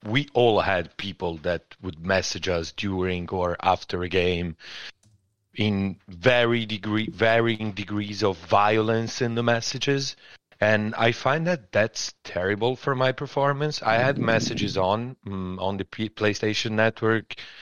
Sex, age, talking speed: male, 30-49, 140 wpm